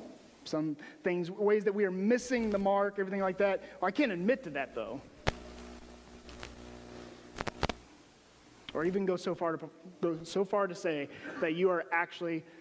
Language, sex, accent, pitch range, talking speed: English, male, American, 160-220 Hz, 155 wpm